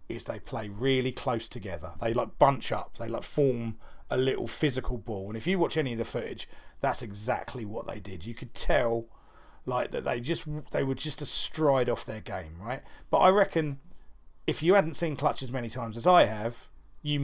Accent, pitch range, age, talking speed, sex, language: British, 105-140 Hz, 40-59, 210 wpm, male, English